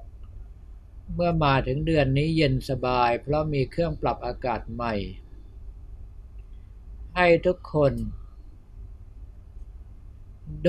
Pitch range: 95-145 Hz